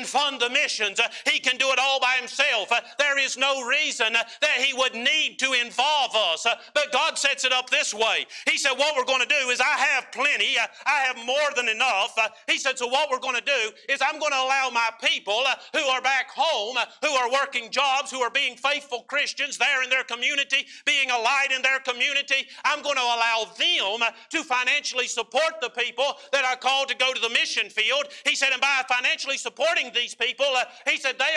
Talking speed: 230 wpm